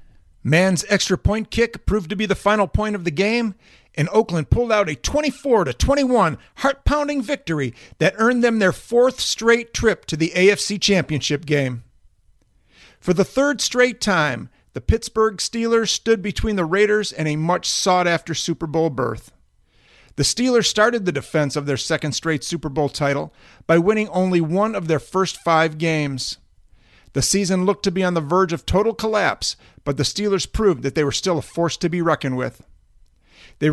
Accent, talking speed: American, 175 wpm